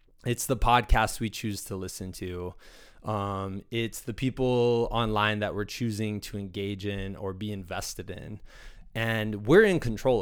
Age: 20-39